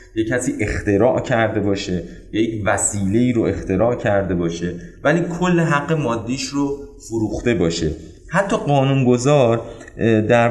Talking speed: 130 wpm